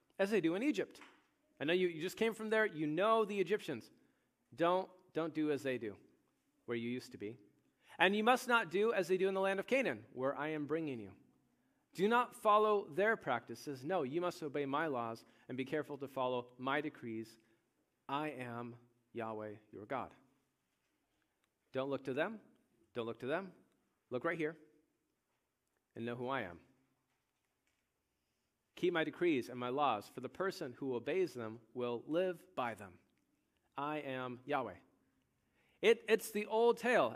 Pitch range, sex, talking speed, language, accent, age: 130-195 Hz, male, 175 wpm, English, American, 40-59